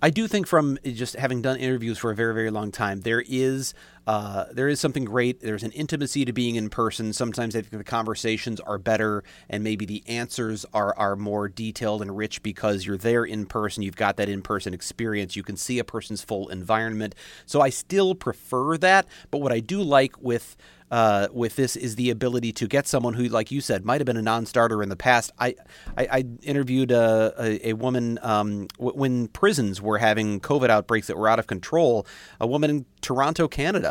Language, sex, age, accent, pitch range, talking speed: English, male, 40-59, American, 105-130 Hz, 210 wpm